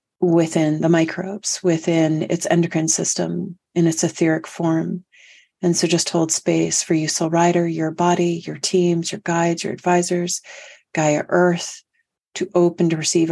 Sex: female